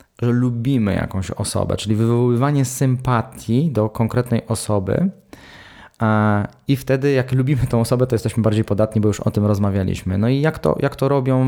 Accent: native